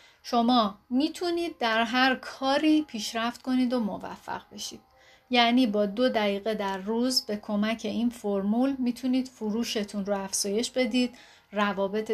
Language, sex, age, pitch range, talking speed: Persian, female, 30-49, 205-265 Hz, 130 wpm